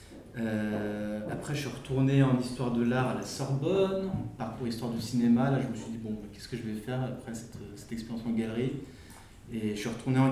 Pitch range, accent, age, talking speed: 110-130 Hz, French, 20-39, 225 wpm